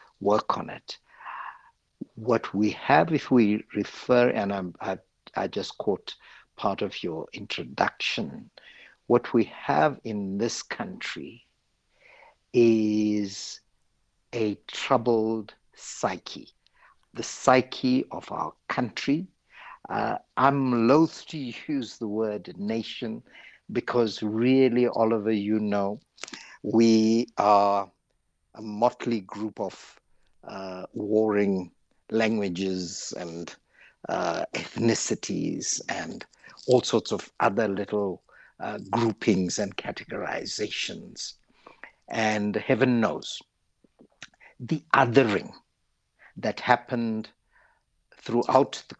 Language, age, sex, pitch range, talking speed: English, 60-79, male, 100-120 Hz, 95 wpm